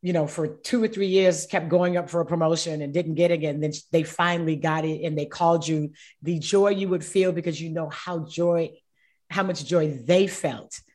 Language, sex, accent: English, female, American